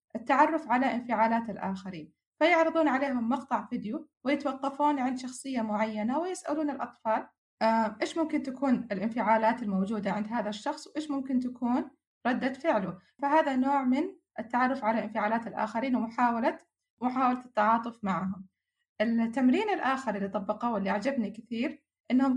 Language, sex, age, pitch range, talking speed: Arabic, female, 20-39, 220-280 Hz, 120 wpm